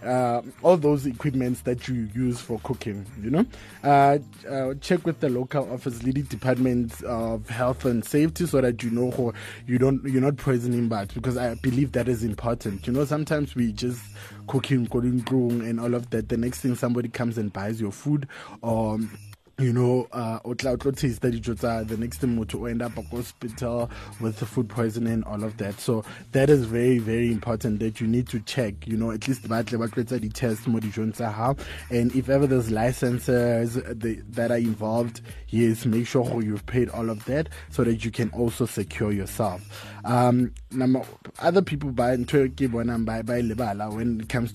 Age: 20-39